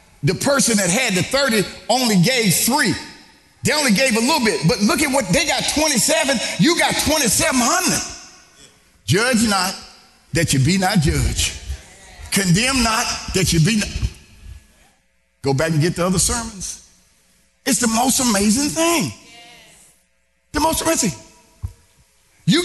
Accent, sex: American, male